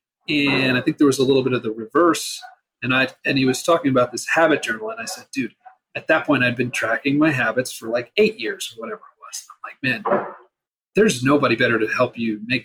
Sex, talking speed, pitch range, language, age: male, 245 wpm, 125-195 Hz, English, 40-59